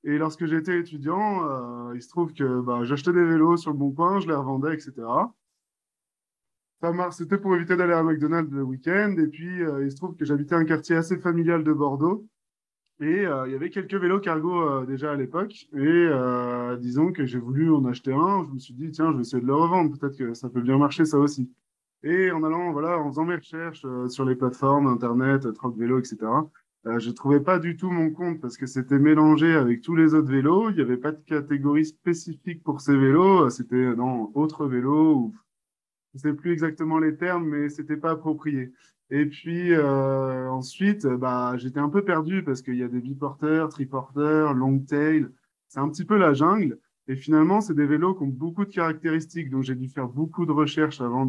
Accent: French